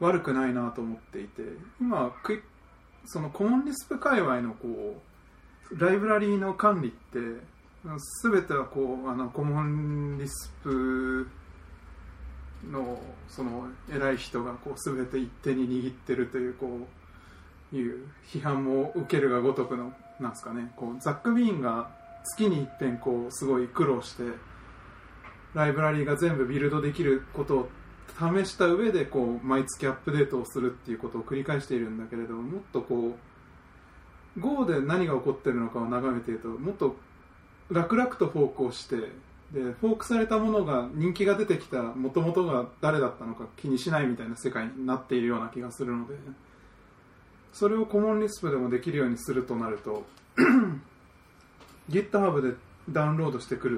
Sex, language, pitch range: male, English, 120-160 Hz